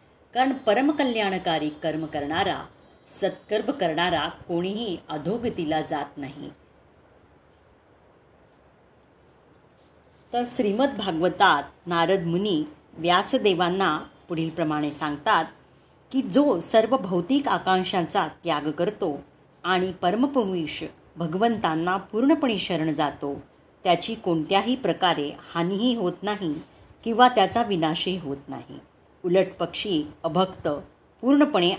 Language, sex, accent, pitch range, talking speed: Marathi, female, native, 160-225 Hz, 90 wpm